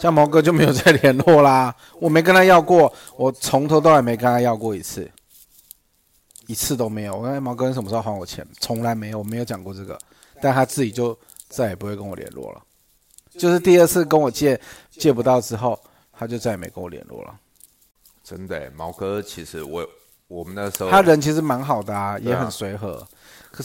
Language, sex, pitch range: Chinese, male, 105-140 Hz